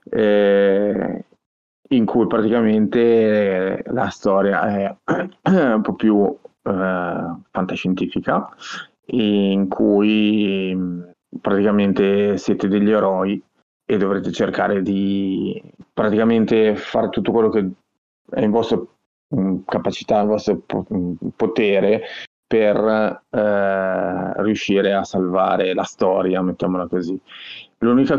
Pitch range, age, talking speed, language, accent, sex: 95-110 Hz, 30-49, 95 wpm, Italian, native, male